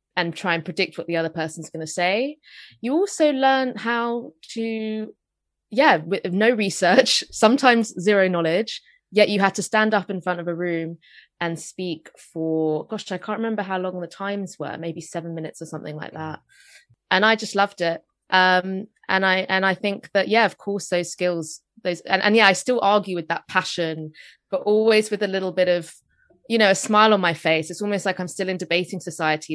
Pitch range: 165-205 Hz